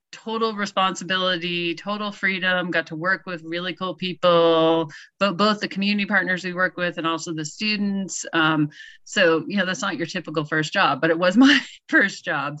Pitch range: 160-195 Hz